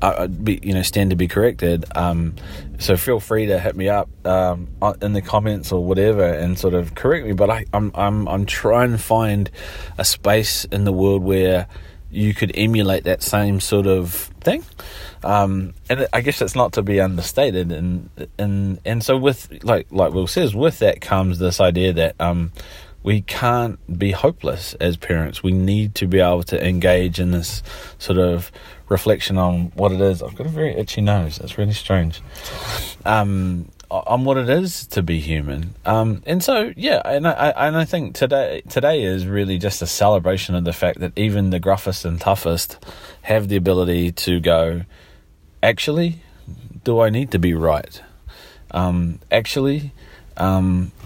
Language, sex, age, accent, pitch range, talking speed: English, male, 30-49, Australian, 90-105 Hz, 180 wpm